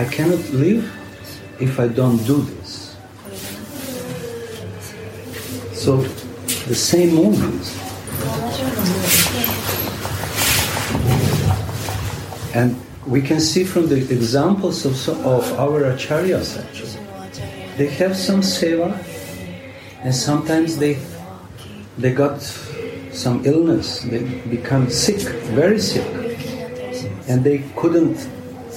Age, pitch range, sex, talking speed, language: 50-69, 105-145 Hz, male, 90 wpm, English